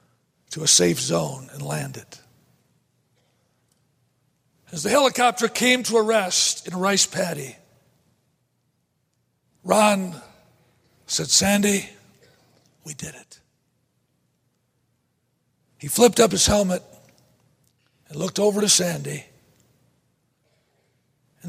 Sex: male